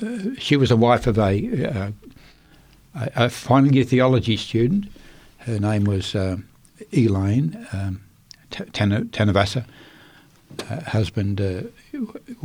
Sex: male